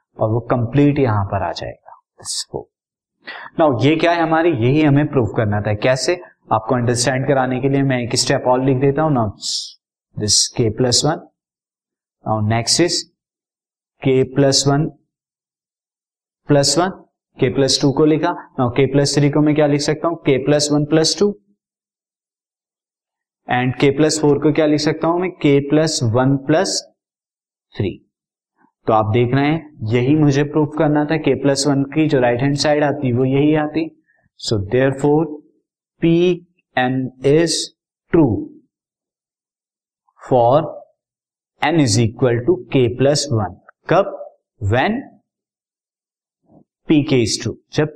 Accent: native